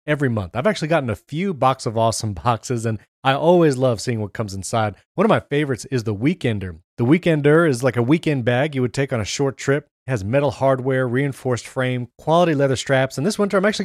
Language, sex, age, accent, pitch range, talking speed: English, male, 30-49, American, 120-155 Hz, 235 wpm